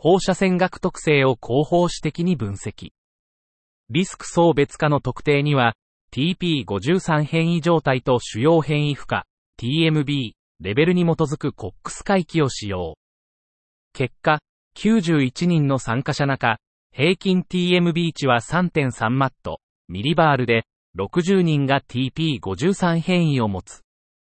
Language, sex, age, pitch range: Japanese, male, 40-59, 120-170 Hz